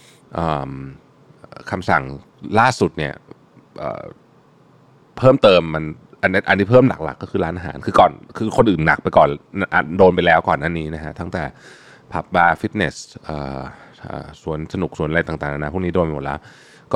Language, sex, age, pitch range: Thai, male, 20-39, 75-105 Hz